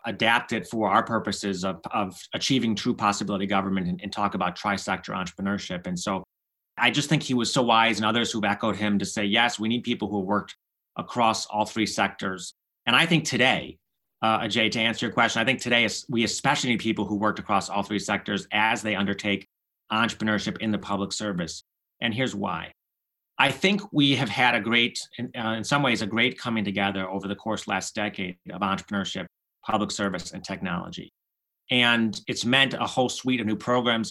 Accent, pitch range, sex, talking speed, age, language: American, 100-120 Hz, male, 195 wpm, 30-49, English